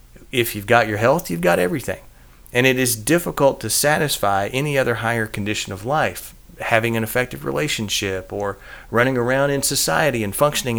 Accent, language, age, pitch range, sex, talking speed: American, English, 40-59, 105-130 Hz, male, 170 wpm